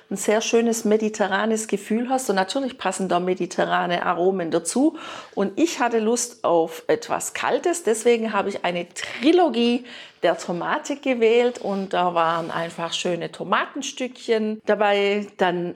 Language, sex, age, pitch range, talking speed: German, female, 50-69, 190-255 Hz, 135 wpm